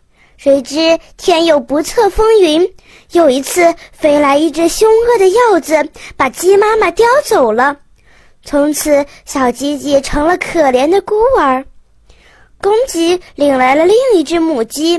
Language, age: Chinese, 20-39